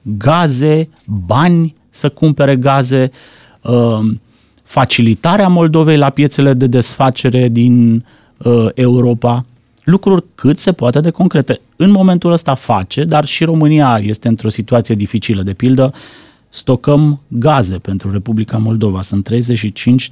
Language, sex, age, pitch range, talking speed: Romanian, male, 30-49, 110-130 Hz, 115 wpm